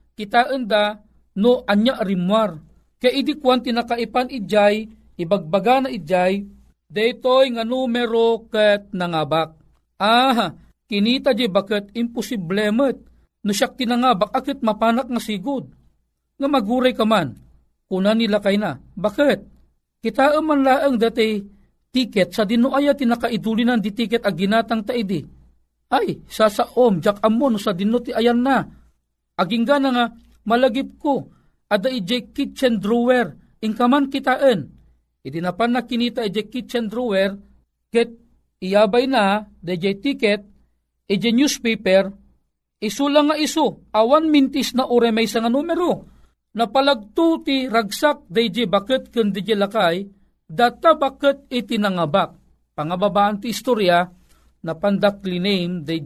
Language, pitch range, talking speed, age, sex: Filipino, 200-250 Hz, 125 wpm, 40-59, male